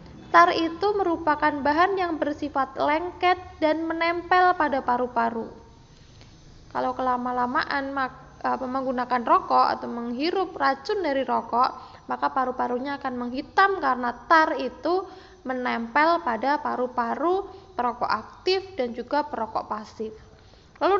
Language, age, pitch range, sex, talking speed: Indonesian, 20-39, 255-330 Hz, female, 105 wpm